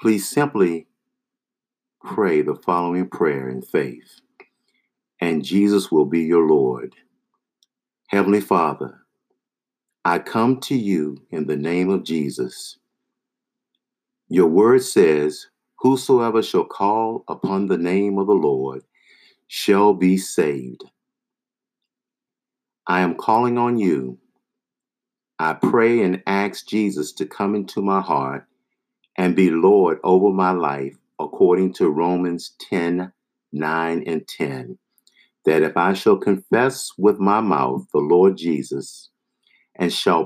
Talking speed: 120 wpm